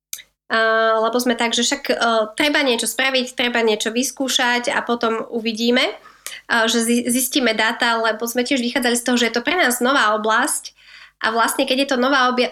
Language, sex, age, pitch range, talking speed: Slovak, female, 20-39, 225-260 Hz, 195 wpm